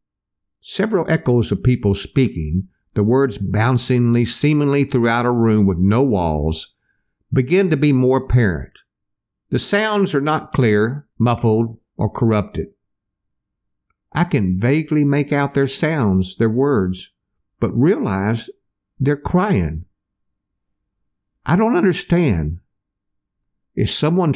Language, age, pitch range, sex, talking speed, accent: English, 60-79, 100-140 Hz, male, 115 wpm, American